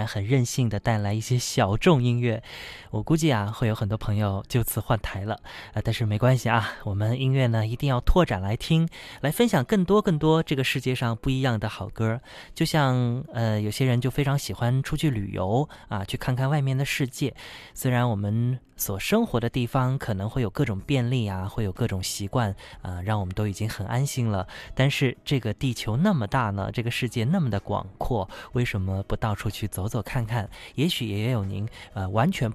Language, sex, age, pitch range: Chinese, male, 20-39, 105-135 Hz